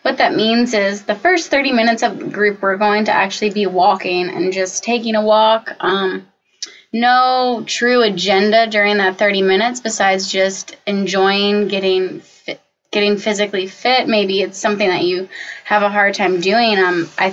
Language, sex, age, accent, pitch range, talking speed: English, female, 10-29, American, 190-215 Hz, 170 wpm